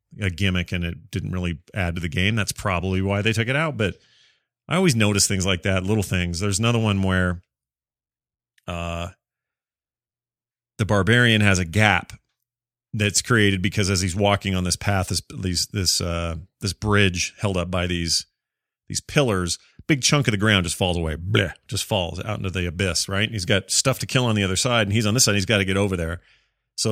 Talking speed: 215 wpm